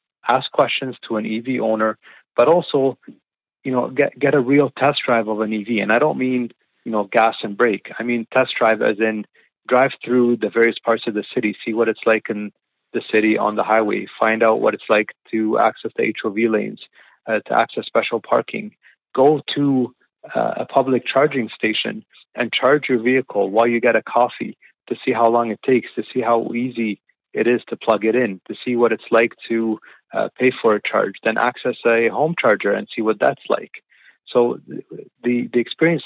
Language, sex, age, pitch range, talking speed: English, male, 30-49, 110-125 Hz, 205 wpm